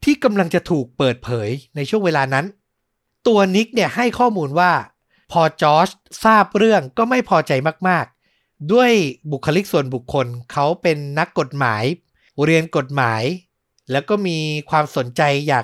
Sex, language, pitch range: male, Thai, 135-190 Hz